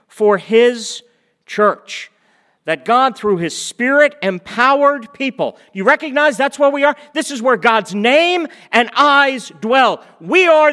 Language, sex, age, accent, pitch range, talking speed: English, male, 50-69, American, 165-270 Hz, 145 wpm